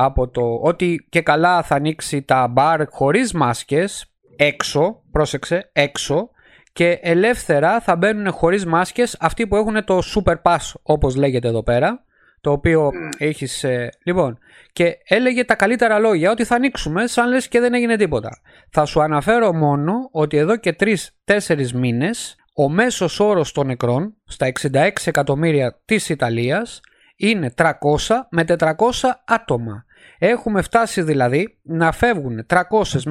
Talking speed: 140 wpm